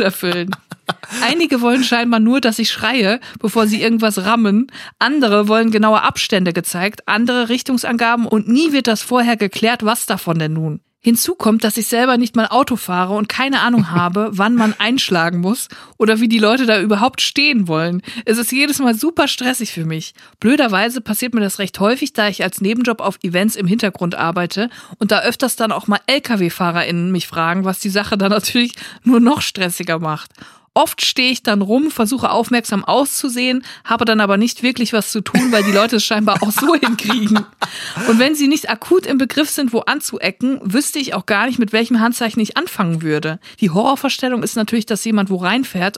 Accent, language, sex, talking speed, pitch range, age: German, German, female, 195 wpm, 205-245 Hz, 50-69